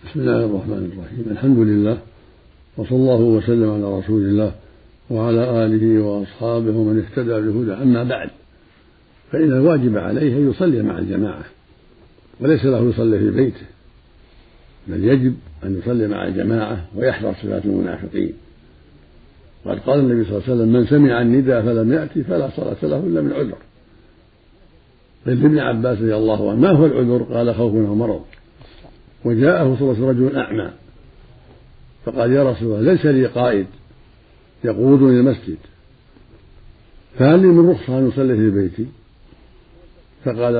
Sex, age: male, 60-79